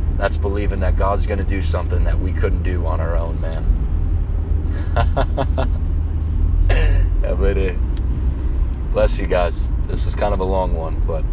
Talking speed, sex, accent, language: 145 wpm, male, American, English